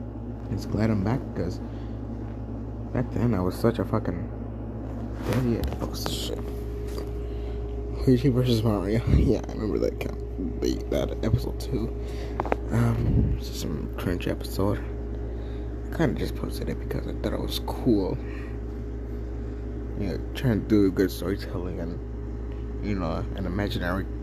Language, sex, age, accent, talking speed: English, male, 20-39, American, 150 wpm